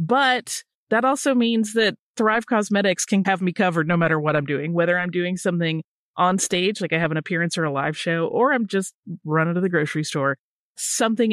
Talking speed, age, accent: 210 wpm, 30-49, American